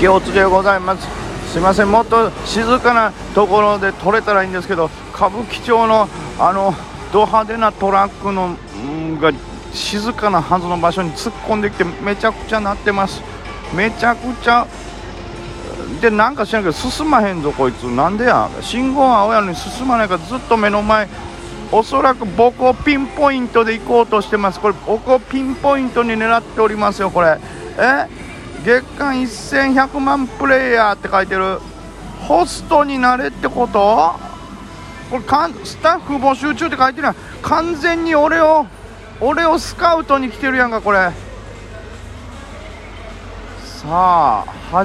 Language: Japanese